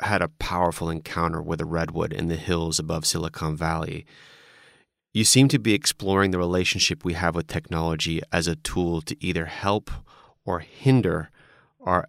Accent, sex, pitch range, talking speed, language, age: American, male, 85-95 Hz, 165 wpm, English, 30-49